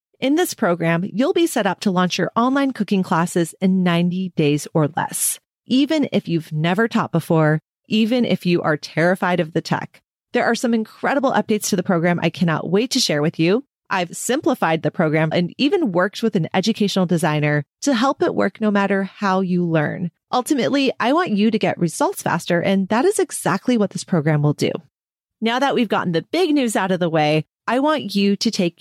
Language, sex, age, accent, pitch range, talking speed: English, female, 30-49, American, 170-240 Hz, 210 wpm